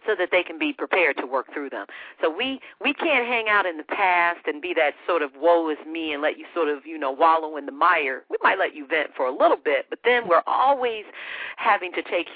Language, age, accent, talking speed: English, 40-59, American, 260 wpm